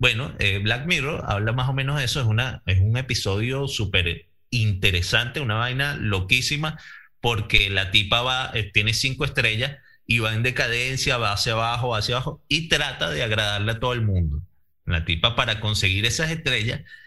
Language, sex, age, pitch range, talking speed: Spanish, male, 30-49, 95-125 Hz, 175 wpm